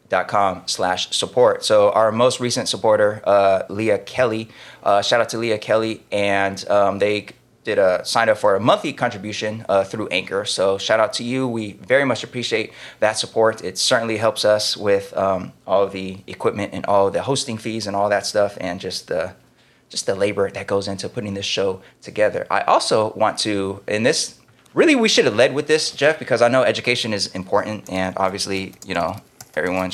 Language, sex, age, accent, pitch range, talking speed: English, male, 20-39, American, 100-125 Hz, 200 wpm